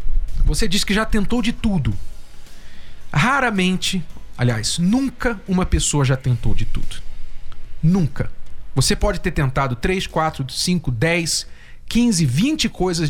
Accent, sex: Brazilian, male